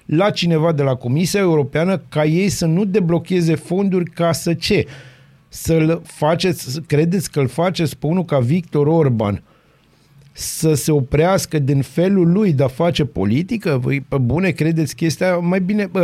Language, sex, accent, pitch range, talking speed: Romanian, male, native, 145-185 Hz, 155 wpm